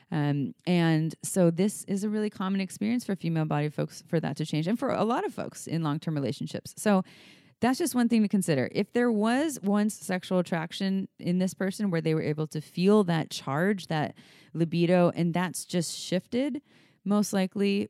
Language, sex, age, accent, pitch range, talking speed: English, female, 20-39, American, 150-185 Hz, 195 wpm